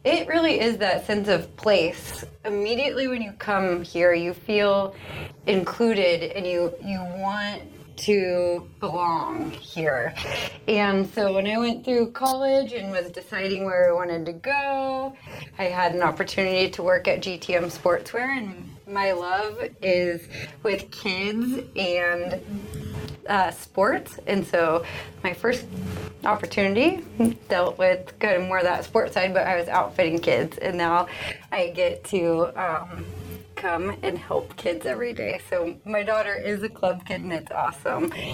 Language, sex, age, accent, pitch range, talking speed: English, female, 30-49, American, 175-210 Hz, 150 wpm